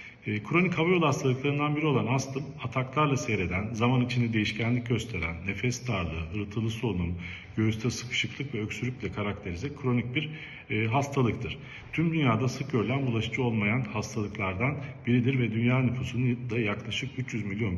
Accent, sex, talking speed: native, male, 130 wpm